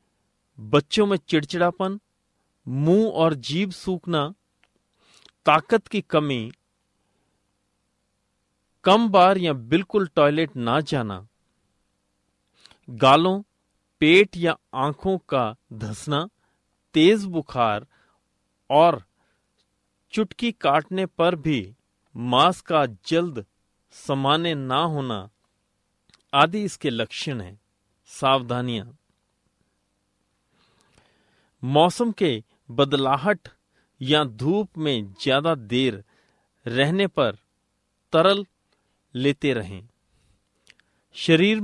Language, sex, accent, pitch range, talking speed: Hindi, male, native, 120-175 Hz, 80 wpm